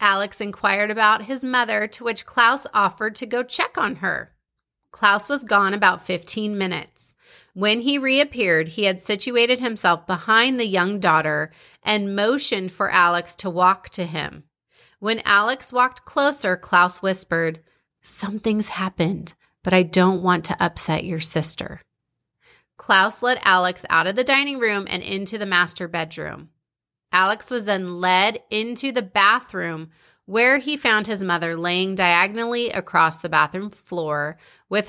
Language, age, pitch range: English, 30-49, 180-230 Hz